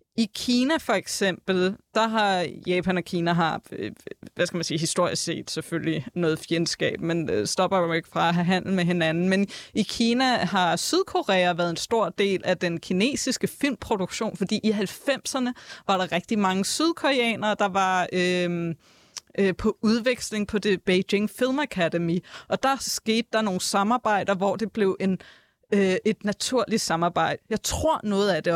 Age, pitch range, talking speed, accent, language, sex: 20-39, 180-215 Hz, 165 wpm, native, Danish, female